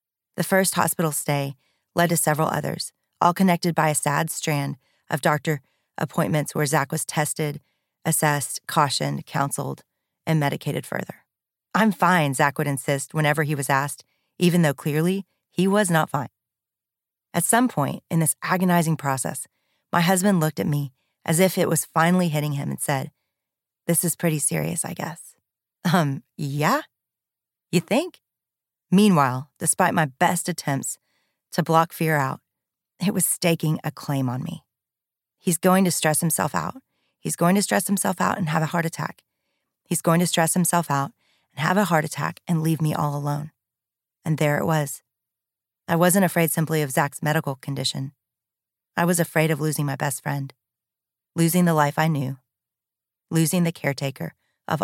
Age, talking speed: 30-49, 165 wpm